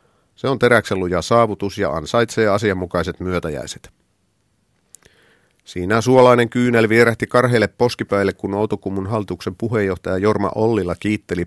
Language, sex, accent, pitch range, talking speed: Finnish, male, native, 90-110 Hz, 110 wpm